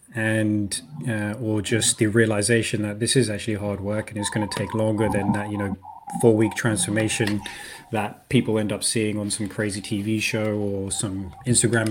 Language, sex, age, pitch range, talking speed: English, male, 20-39, 105-110 Hz, 190 wpm